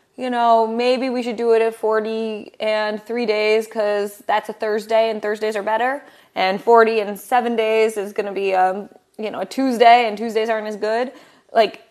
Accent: American